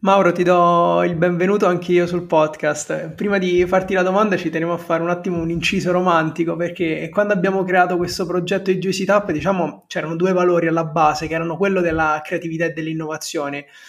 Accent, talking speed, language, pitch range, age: native, 195 wpm, Italian, 170-200 Hz, 20-39